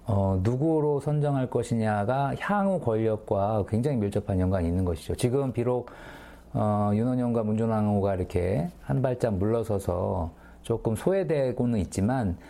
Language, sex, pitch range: Korean, male, 95-130 Hz